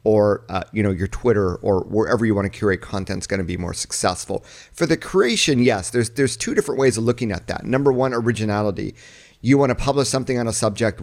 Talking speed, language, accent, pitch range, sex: 235 wpm, English, American, 105-125 Hz, male